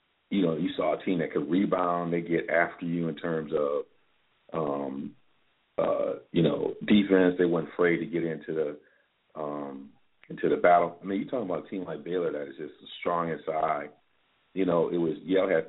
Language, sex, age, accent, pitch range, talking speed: English, male, 40-59, American, 80-90 Hz, 205 wpm